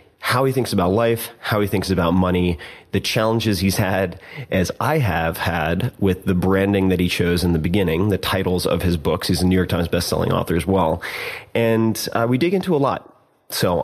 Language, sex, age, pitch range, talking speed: English, male, 30-49, 90-105 Hz, 215 wpm